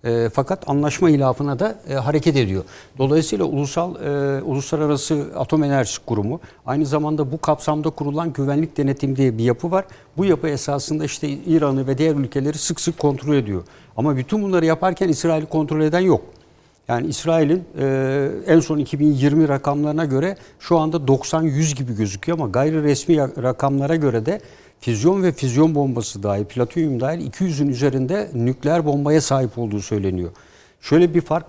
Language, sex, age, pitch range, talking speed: Turkish, male, 60-79, 130-160 Hz, 150 wpm